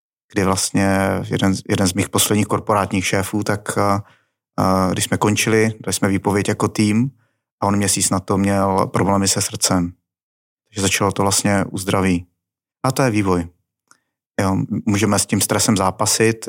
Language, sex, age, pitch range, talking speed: Czech, male, 30-49, 95-110 Hz, 155 wpm